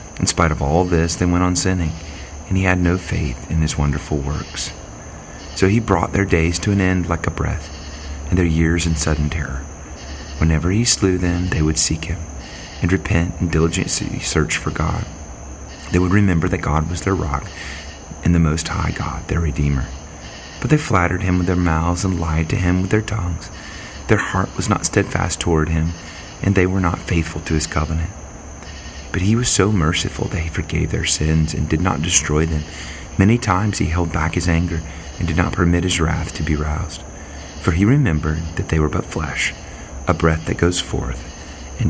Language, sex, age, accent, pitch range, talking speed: English, male, 30-49, American, 75-95 Hz, 200 wpm